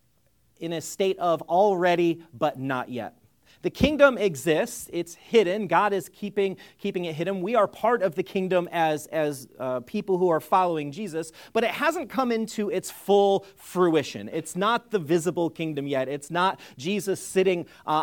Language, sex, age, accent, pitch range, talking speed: English, male, 40-59, American, 130-190 Hz, 175 wpm